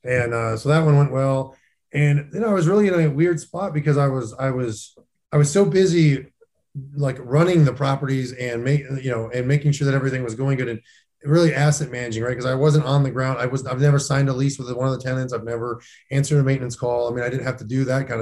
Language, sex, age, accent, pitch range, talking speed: English, male, 20-39, American, 120-145 Hz, 265 wpm